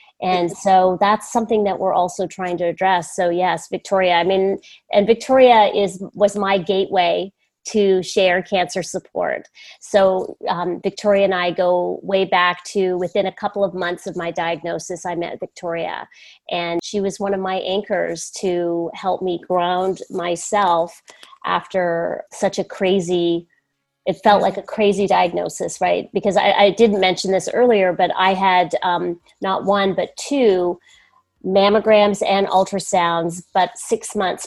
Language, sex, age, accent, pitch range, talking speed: English, female, 30-49, American, 175-195 Hz, 155 wpm